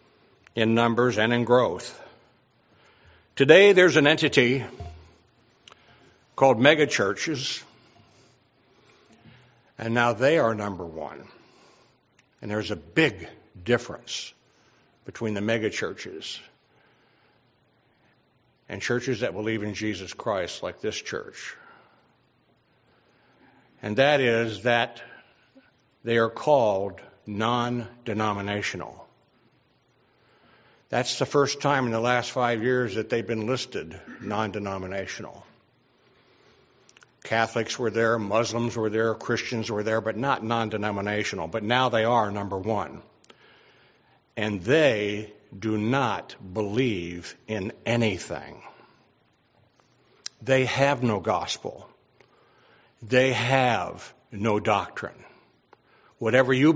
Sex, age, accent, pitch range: male, 60-79, American, 105-125 Hz